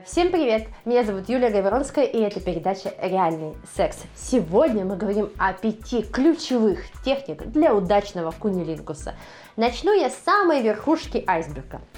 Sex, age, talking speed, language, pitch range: female, 20-39, 135 wpm, Russian, 205-315 Hz